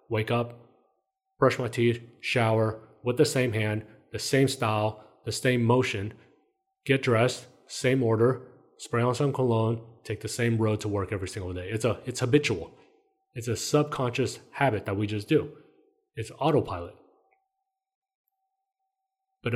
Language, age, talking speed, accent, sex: English, 30-49, 145 wpm, American, male